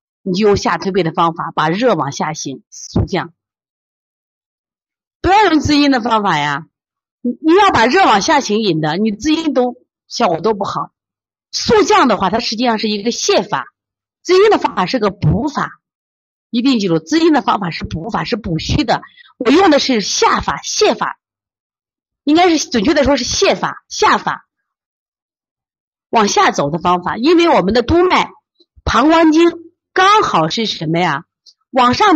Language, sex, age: Chinese, female, 30-49